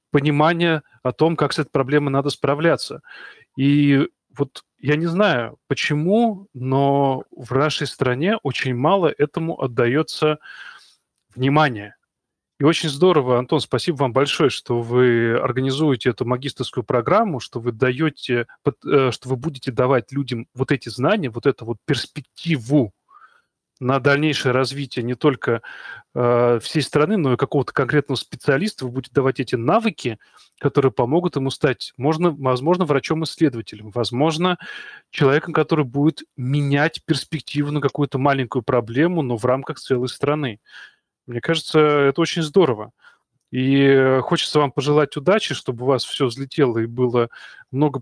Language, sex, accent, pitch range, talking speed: Russian, male, native, 125-155 Hz, 135 wpm